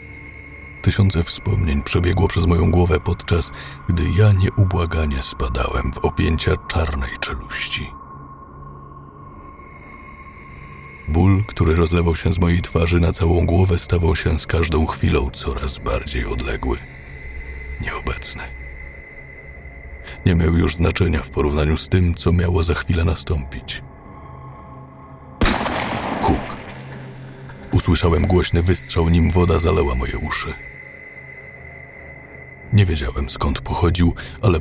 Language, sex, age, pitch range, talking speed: Polish, male, 50-69, 70-90 Hz, 105 wpm